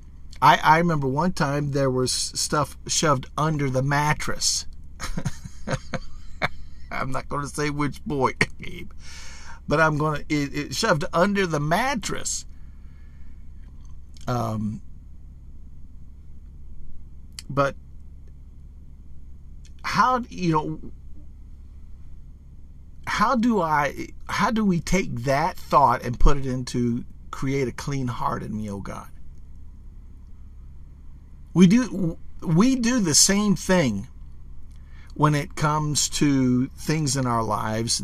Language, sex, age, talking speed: English, male, 50-69, 110 wpm